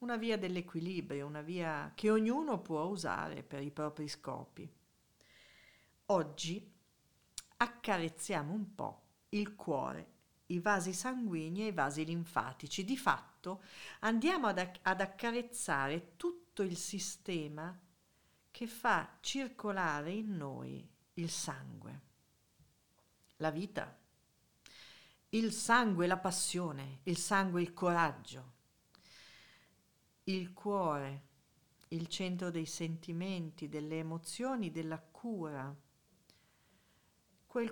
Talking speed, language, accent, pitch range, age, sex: 100 wpm, Italian, native, 155-205 Hz, 50-69, female